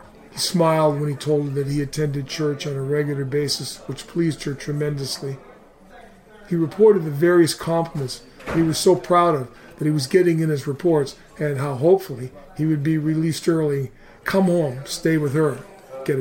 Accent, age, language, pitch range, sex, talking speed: American, 40-59, English, 140-165 Hz, male, 180 wpm